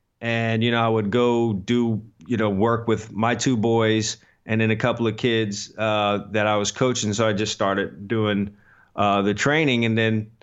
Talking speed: 200 wpm